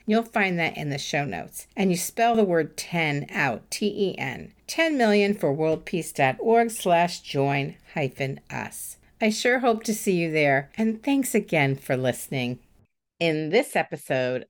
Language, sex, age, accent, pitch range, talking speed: English, female, 50-69, American, 165-230 Hz, 155 wpm